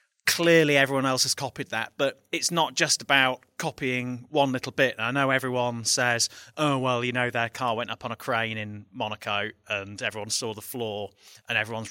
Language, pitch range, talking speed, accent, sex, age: English, 115-140 Hz, 195 wpm, British, male, 30-49